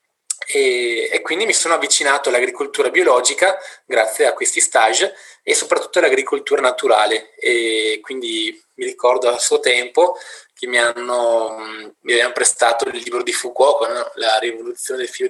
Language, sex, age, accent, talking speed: Italian, male, 20-39, native, 150 wpm